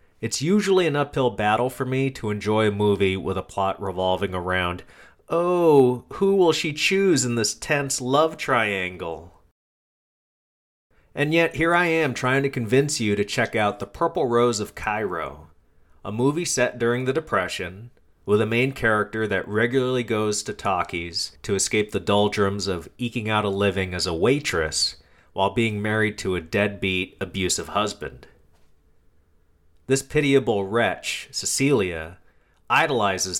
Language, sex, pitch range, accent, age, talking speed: English, male, 90-120 Hz, American, 30-49, 150 wpm